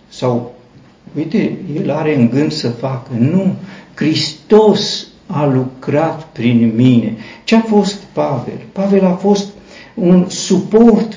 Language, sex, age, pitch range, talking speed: Romanian, male, 50-69, 125-195 Hz, 120 wpm